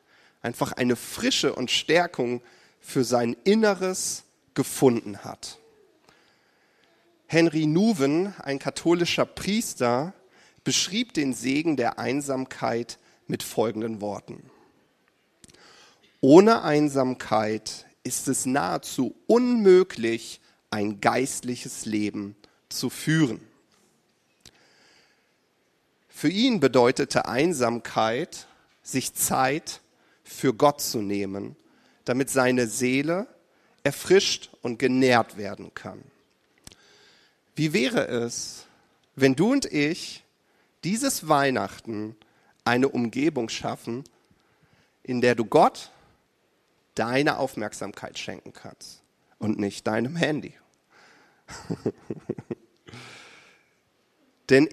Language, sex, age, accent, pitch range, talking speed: German, male, 40-59, German, 115-175 Hz, 85 wpm